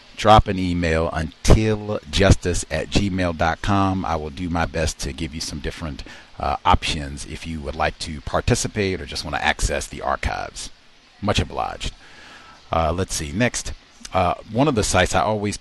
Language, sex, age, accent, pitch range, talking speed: English, male, 40-59, American, 80-105 Hz, 170 wpm